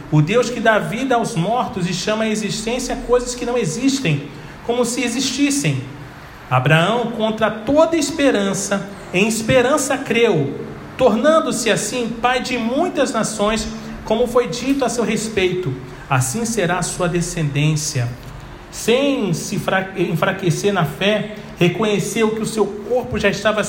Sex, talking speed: male, 135 wpm